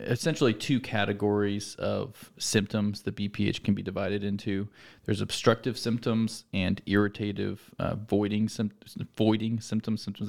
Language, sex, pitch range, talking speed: English, male, 100-110 Hz, 120 wpm